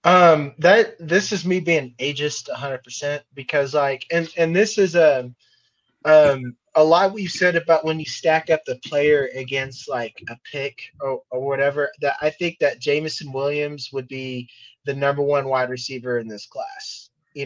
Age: 20-39